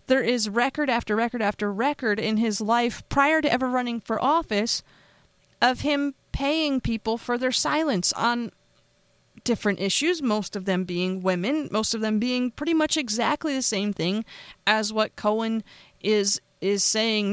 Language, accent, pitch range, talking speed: English, American, 185-245 Hz, 165 wpm